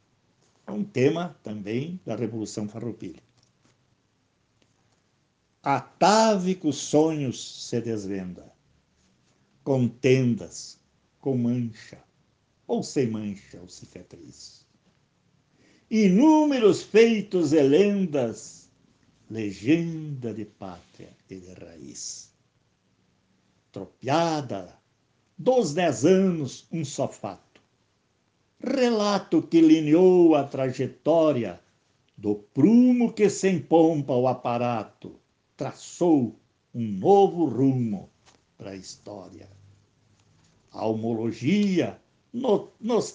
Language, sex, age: Portuguese, male, 60-79